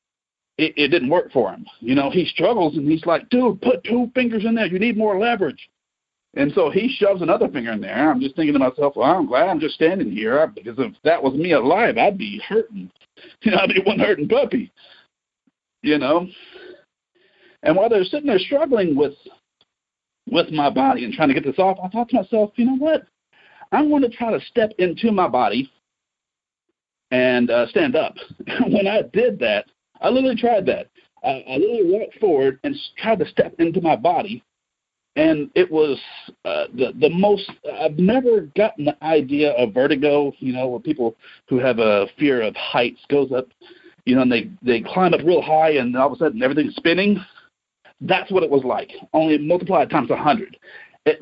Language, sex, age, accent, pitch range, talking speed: English, male, 50-69, American, 150-245 Hz, 200 wpm